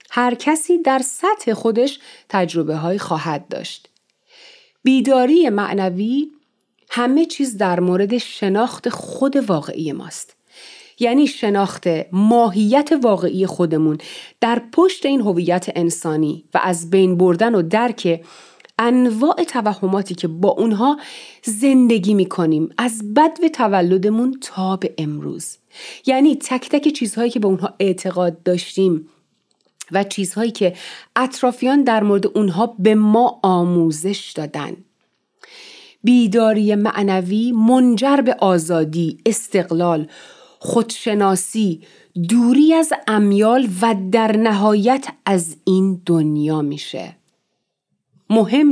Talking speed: 105 wpm